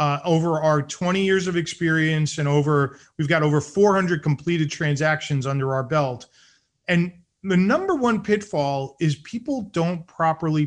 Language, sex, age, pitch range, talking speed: English, male, 40-59, 150-200 Hz, 150 wpm